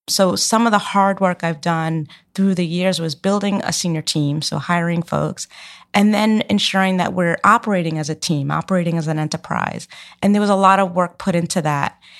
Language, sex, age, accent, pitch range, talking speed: English, female, 30-49, American, 170-210 Hz, 205 wpm